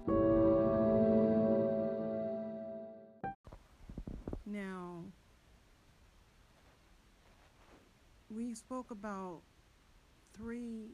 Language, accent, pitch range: English, American, 160-195 Hz